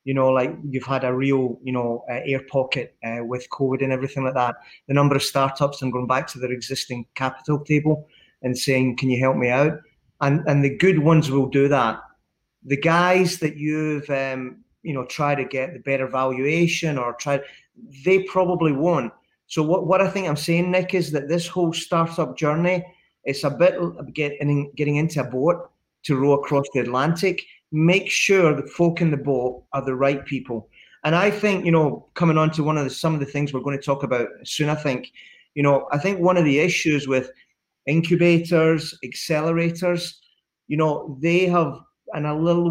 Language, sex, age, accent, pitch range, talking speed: English, male, 30-49, British, 135-165 Hz, 200 wpm